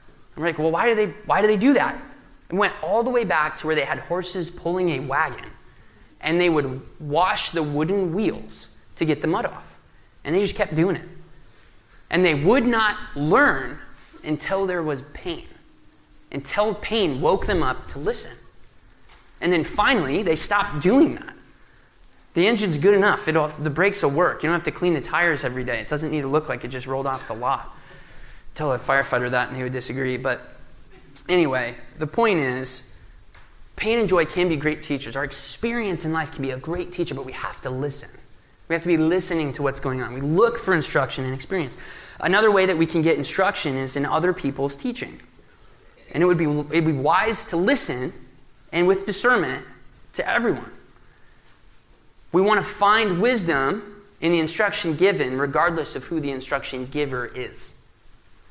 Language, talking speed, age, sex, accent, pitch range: English, 190 wpm, 20-39, male, American, 135-190 Hz